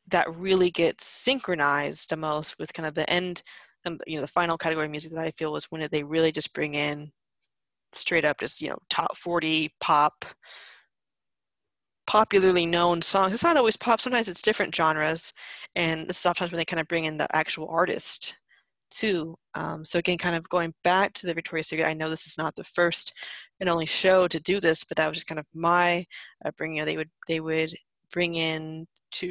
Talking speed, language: 205 wpm, English